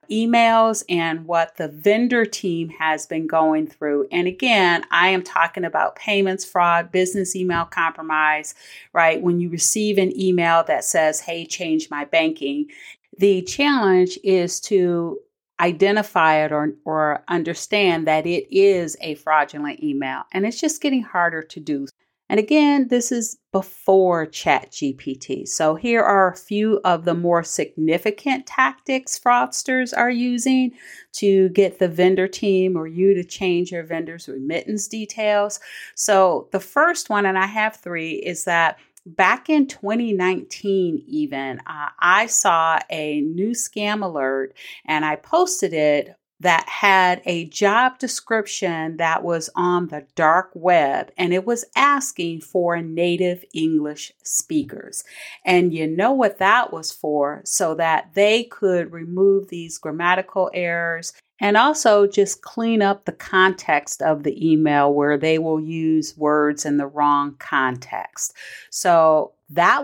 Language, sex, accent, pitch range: English, female, American, 160-215 Hz